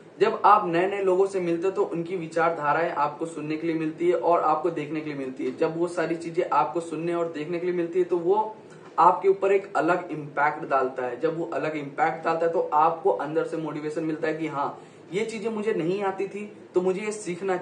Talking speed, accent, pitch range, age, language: 240 wpm, native, 160-190 Hz, 20-39, Hindi